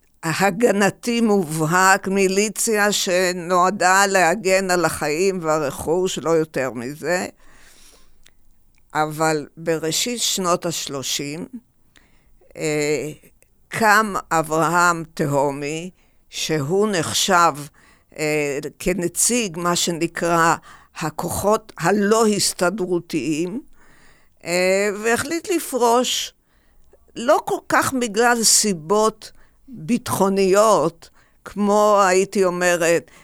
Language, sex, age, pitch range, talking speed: Hebrew, female, 50-69, 160-200 Hz, 70 wpm